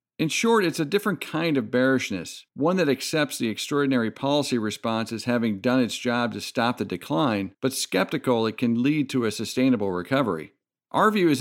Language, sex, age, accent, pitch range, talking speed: English, male, 50-69, American, 110-140 Hz, 190 wpm